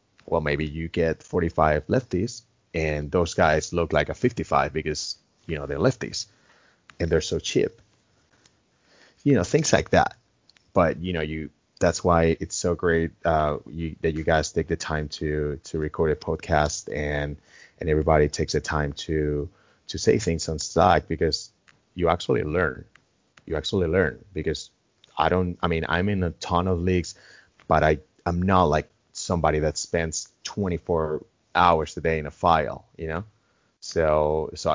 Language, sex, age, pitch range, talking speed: English, male, 30-49, 75-90 Hz, 170 wpm